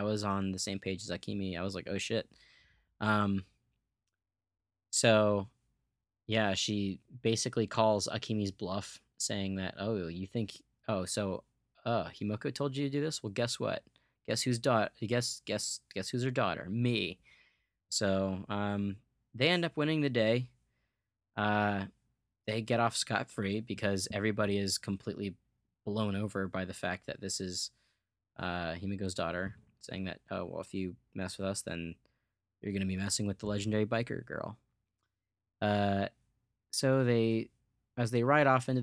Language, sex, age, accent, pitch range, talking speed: English, male, 20-39, American, 95-115 Hz, 160 wpm